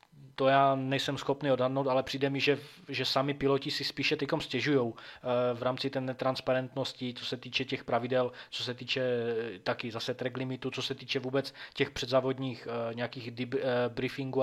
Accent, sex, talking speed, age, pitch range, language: native, male, 165 wpm, 20-39, 125-135 Hz, Czech